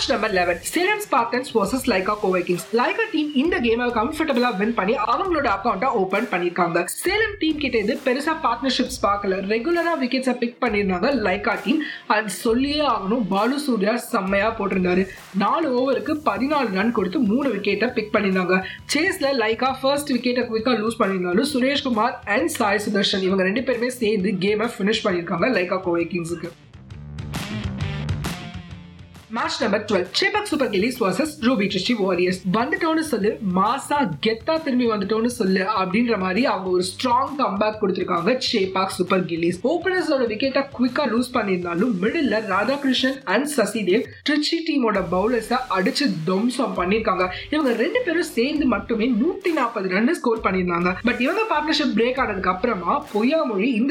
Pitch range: 195-270 Hz